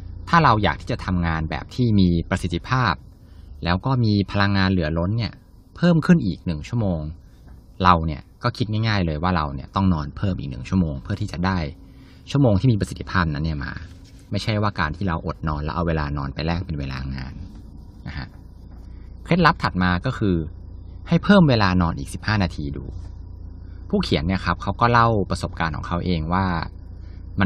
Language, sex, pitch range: Thai, male, 85-105 Hz